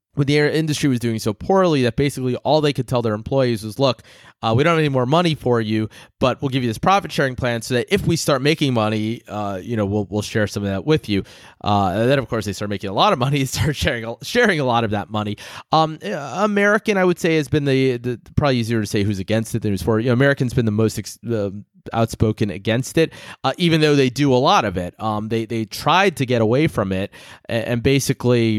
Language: English